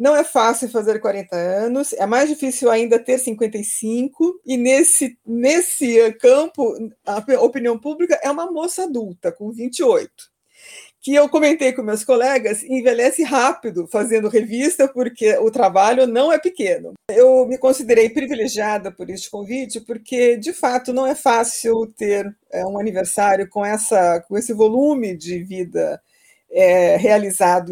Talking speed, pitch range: 140 wpm, 205-265 Hz